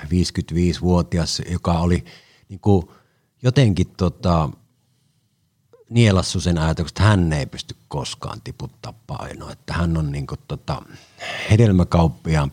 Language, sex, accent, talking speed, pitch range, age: Finnish, male, native, 105 wpm, 80-100 Hz, 50-69